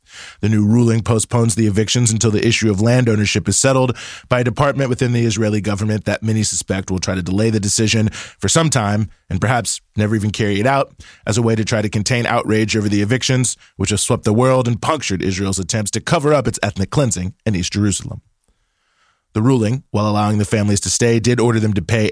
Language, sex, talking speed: English, male, 225 wpm